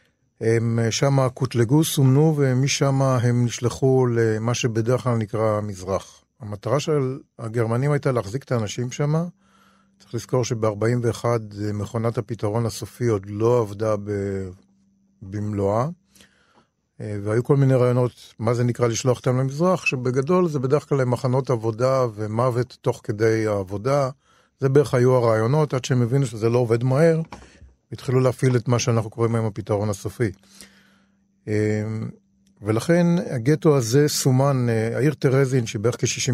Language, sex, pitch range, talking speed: Hebrew, male, 110-135 Hz, 130 wpm